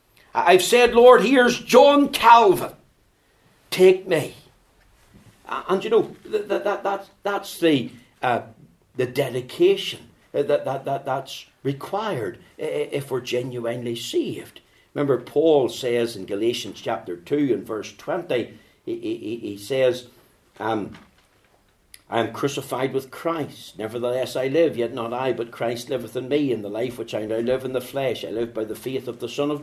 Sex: male